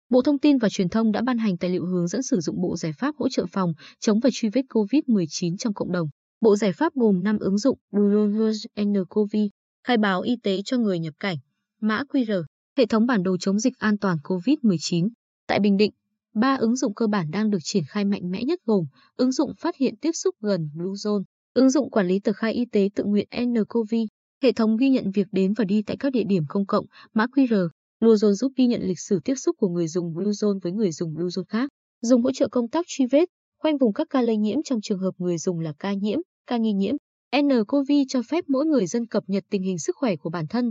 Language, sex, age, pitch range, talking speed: Vietnamese, female, 20-39, 195-255 Hz, 240 wpm